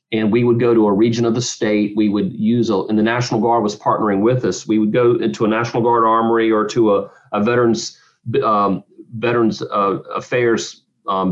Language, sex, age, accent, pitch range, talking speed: English, male, 40-59, American, 110-125 Hz, 200 wpm